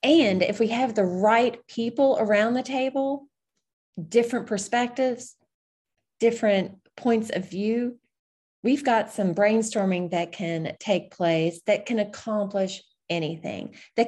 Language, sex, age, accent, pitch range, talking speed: English, female, 30-49, American, 175-230 Hz, 125 wpm